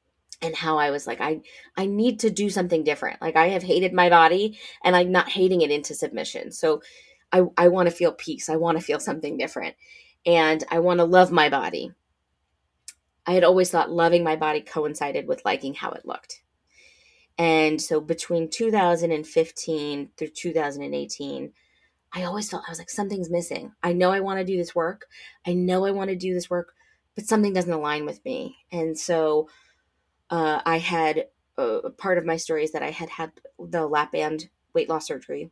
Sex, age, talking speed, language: female, 20-39, 195 wpm, English